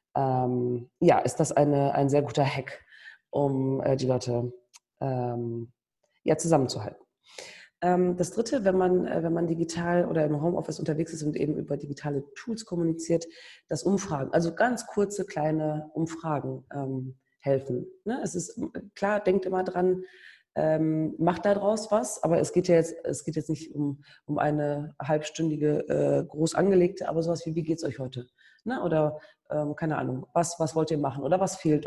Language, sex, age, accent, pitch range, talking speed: German, female, 30-49, German, 145-180 Hz, 175 wpm